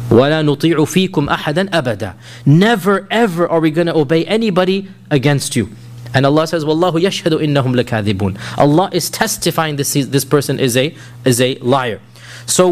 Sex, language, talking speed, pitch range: male, English, 130 wpm, 125-160 Hz